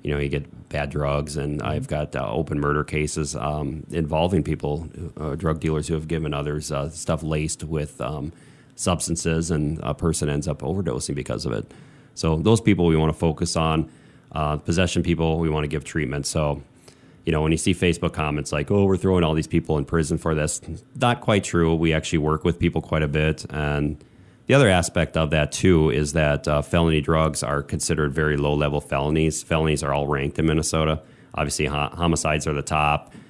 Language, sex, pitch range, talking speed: English, male, 75-85 Hz, 205 wpm